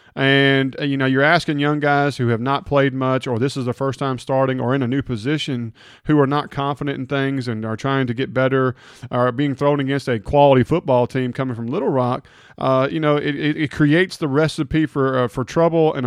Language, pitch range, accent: English, 125-145 Hz, American